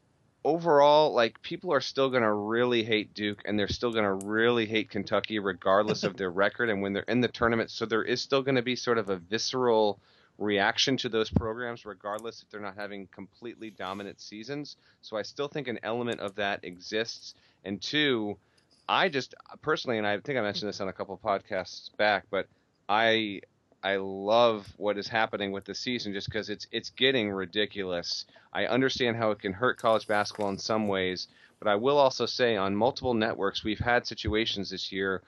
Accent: American